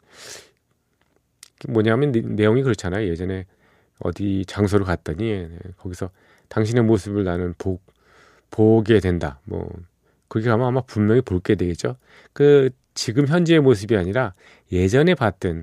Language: Korean